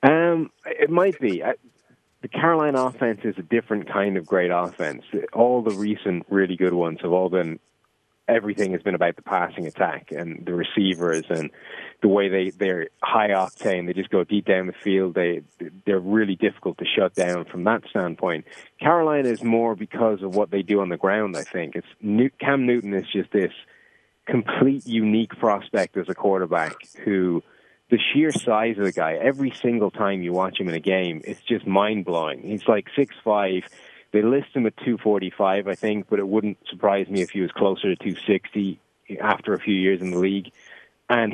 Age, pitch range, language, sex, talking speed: 30-49, 95-115 Hz, English, male, 190 wpm